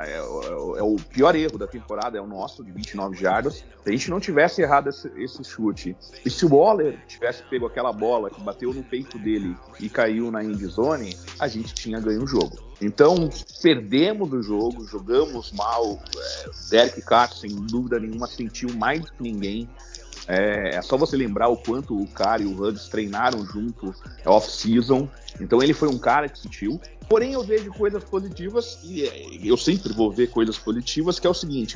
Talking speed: 195 wpm